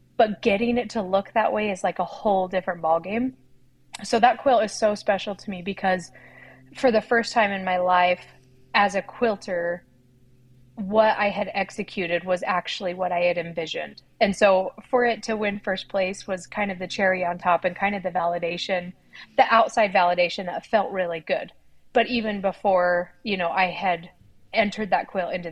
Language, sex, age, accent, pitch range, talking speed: English, female, 30-49, American, 175-210 Hz, 190 wpm